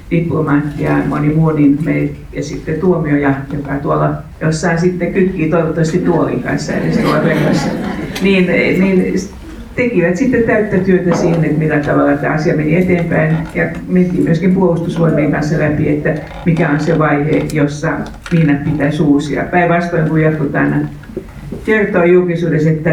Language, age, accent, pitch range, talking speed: Finnish, 60-79, native, 145-170 Hz, 125 wpm